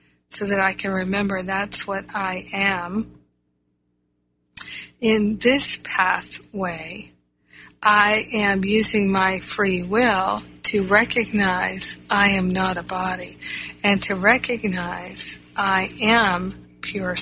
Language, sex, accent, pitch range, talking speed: English, female, American, 175-220 Hz, 110 wpm